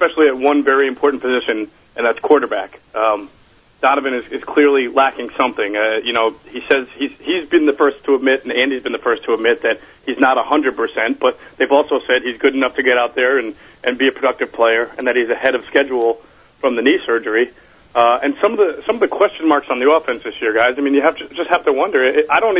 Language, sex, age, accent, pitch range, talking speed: English, male, 40-59, American, 125-155 Hz, 255 wpm